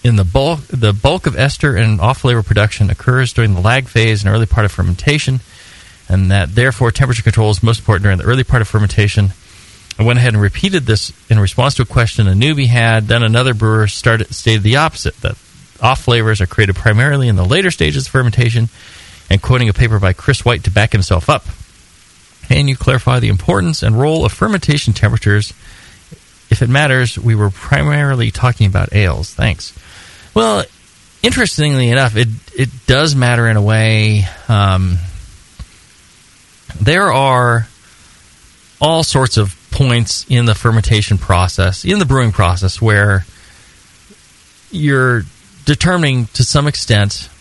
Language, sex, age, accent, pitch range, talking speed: English, male, 40-59, American, 100-125 Hz, 160 wpm